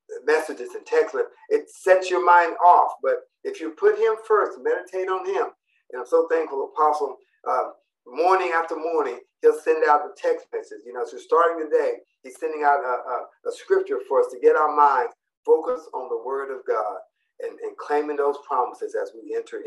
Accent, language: American, English